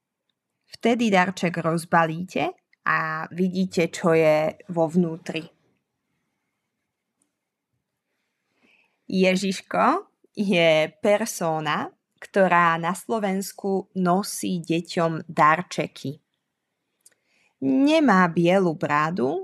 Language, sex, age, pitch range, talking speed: Slovak, female, 20-39, 165-200 Hz, 65 wpm